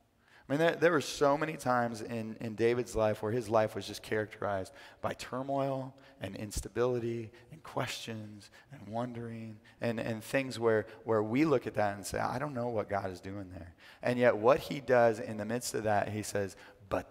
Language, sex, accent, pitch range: English, male, American, 110-125 Hz